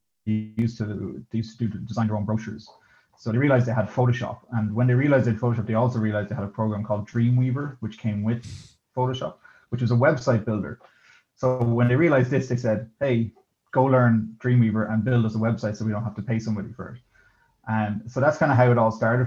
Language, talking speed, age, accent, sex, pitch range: English, 225 wpm, 20-39, Irish, male, 105-120 Hz